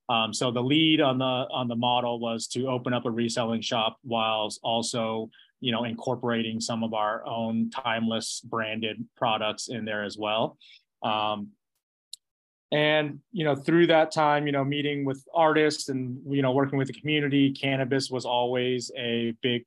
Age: 20-39